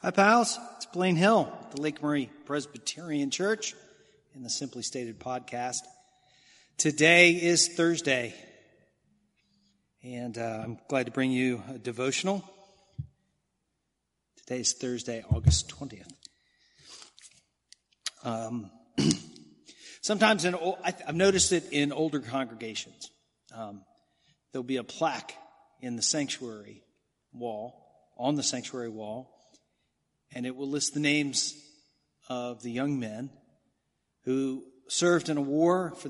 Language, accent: English, American